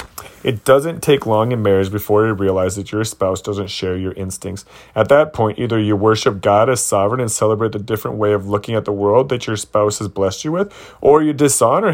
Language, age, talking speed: English, 30-49, 225 wpm